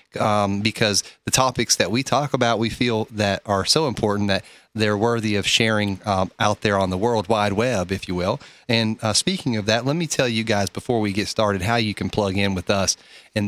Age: 30-49